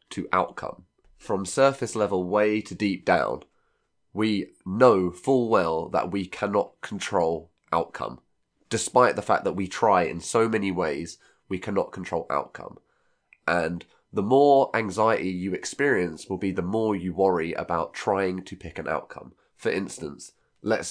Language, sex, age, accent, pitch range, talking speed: English, male, 20-39, British, 90-110 Hz, 150 wpm